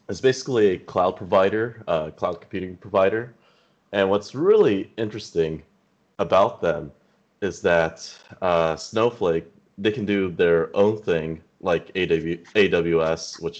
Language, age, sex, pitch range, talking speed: English, 30-49, male, 80-105 Hz, 130 wpm